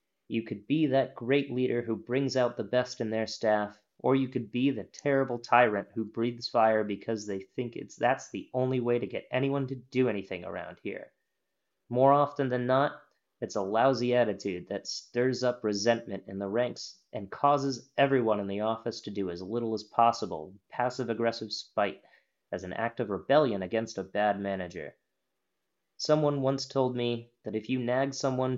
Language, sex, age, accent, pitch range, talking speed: English, male, 30-49, American, 110-135 Hz, 185 wpm